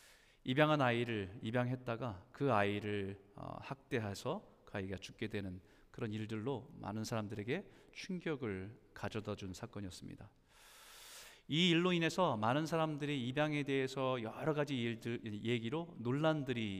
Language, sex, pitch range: Korean, male, 105-150 Hz